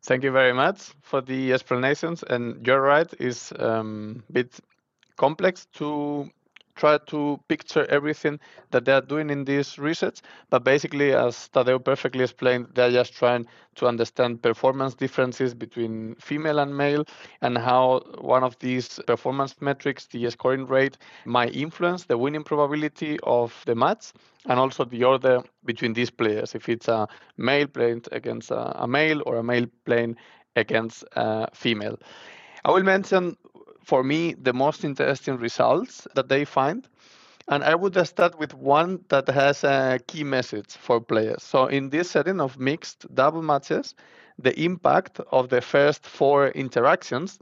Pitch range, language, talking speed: 125-150 Hz, English, 155 wpm